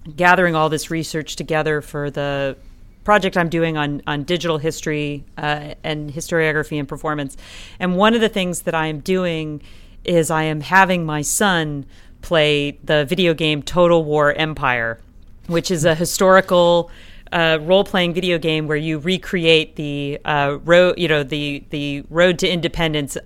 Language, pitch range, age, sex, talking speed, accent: English, 150-180 Hz, 40-59, female, 160 wpm, American